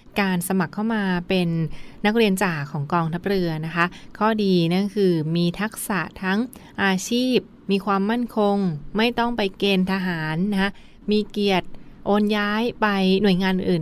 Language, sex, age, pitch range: Thai, female, 20-39, 180-210 Hz